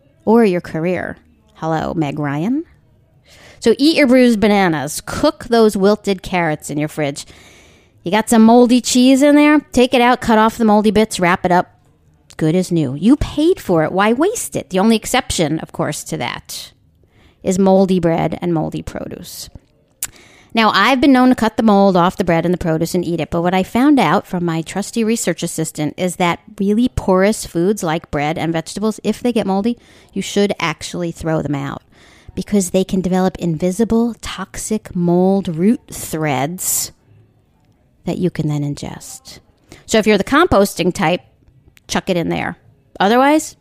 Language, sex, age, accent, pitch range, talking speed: English, female, 40-59, American, 165-225 Hz, 180 wpm